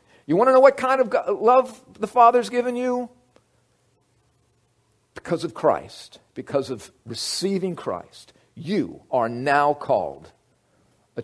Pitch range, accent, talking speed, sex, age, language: 110-150 Hz, American, 130 wpm, male, 50-69, English